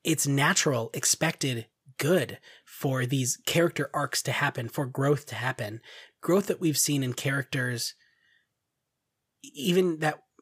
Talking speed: 125 wpm